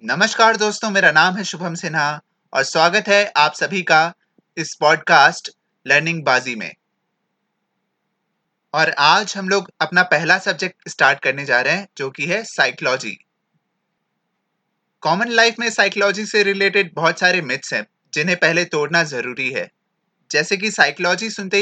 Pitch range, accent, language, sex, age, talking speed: 150-200 Hz, native, Hindi, male, 20-39, 145 wpm